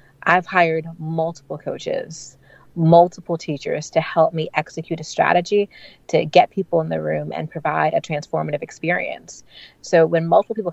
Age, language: 30-49, English